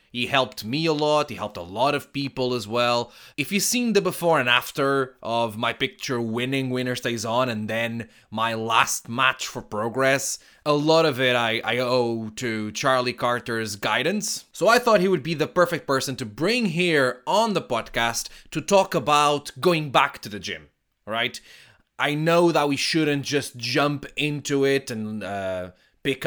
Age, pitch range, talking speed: 20-39, 120-170 Hz, 185 wpm